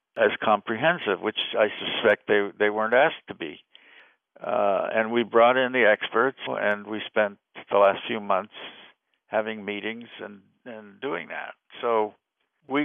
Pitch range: 105-115 Hz